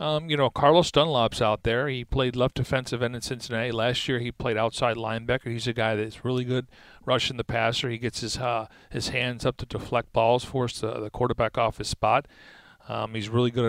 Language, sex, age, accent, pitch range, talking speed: English, male, 40-59, American, 115-135 Hz, 220 wpm